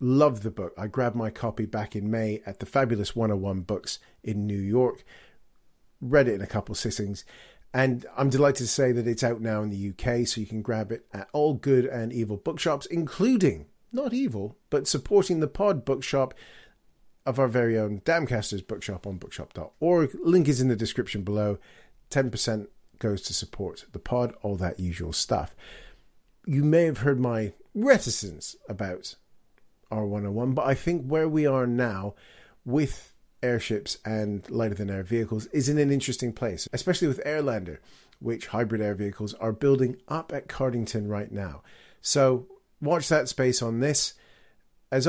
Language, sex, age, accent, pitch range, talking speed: English, male, 40-59, British, 105-140 Hz, 170 wpm